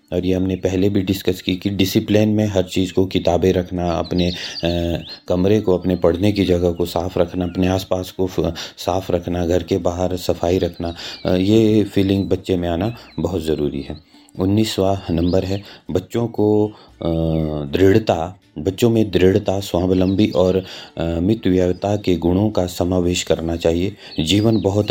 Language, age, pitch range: Hindi, 30-49, 90-110 Hz